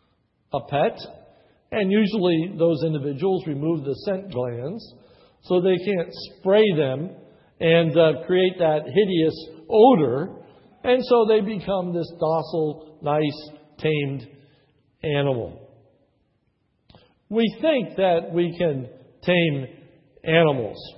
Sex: male